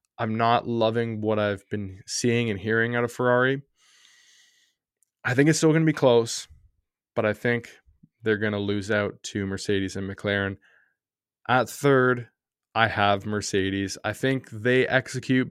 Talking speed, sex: 160 wpm, male